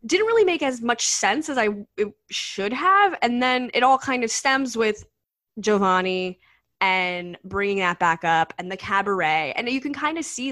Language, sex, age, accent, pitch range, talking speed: English, female, 10-29, American, 190-235 Hz, 190 wpm